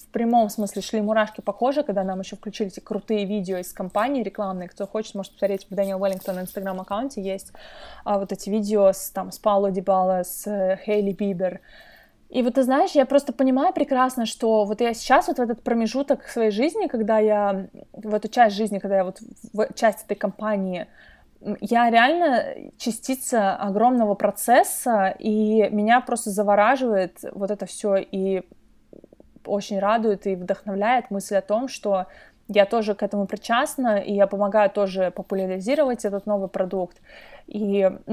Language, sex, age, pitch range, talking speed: Russian, female, 20-39, 195-235 Hz, 170 wpm